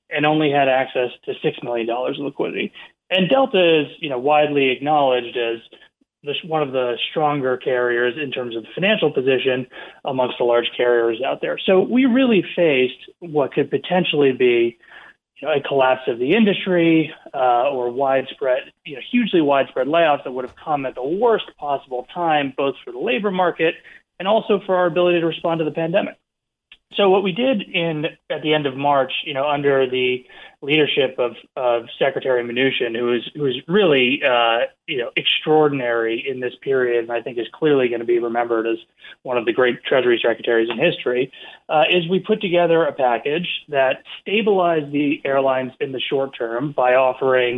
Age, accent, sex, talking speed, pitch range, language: 30-49, American, male, 185 wpm, 125-170 Hz, English